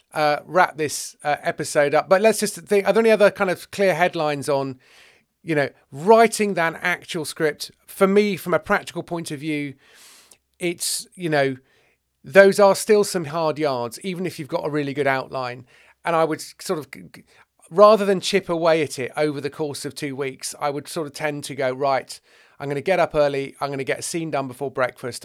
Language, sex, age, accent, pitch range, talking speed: English, male, 40-59, British, 135-170 Hz, 210 wpm